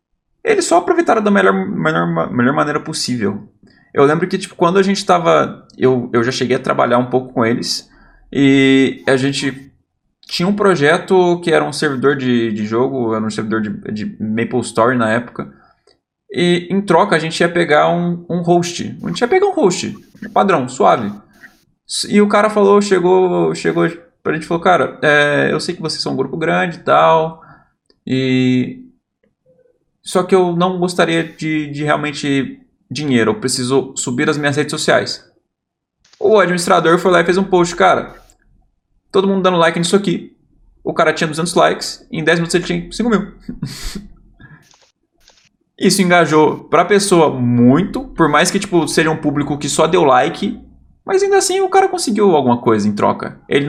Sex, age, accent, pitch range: male, 20-39, Brazilian, 130-185 Hz